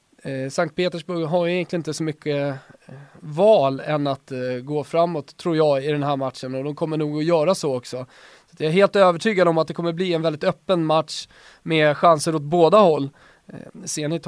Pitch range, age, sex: 145-180 Hz, 20-39, male